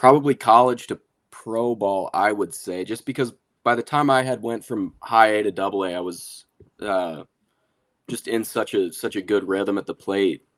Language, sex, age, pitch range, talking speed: English, male, 20-39, 95-110 Hz, 205 wpm